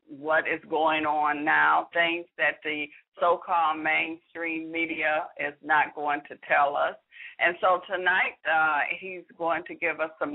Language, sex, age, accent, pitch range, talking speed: English, female, 50-69, American, 155-185 Hz, 155 wpm